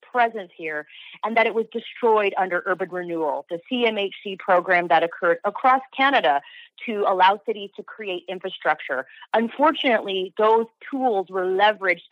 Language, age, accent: English, 30-49, American